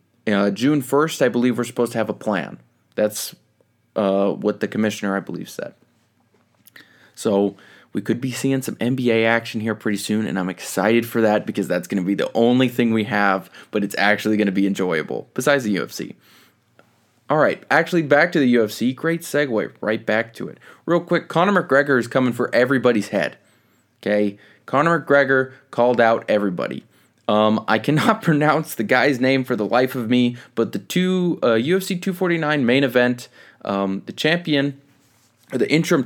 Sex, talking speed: male, 180 wpm